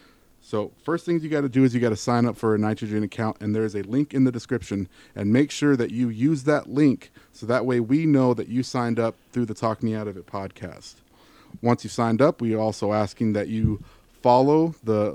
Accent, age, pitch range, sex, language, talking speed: American, 30-49, 110-135 Hz, male, English, 240 wpm